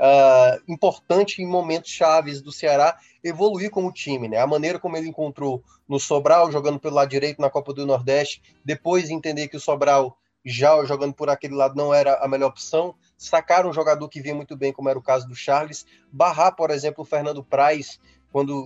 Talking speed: 195 wpm